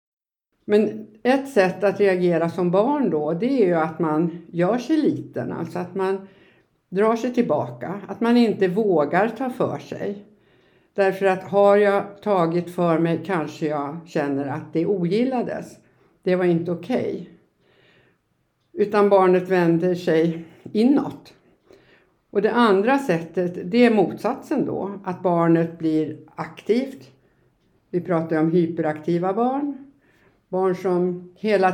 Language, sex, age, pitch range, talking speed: Swedish, female, 60-79, 165-210 Hz, 135 wpm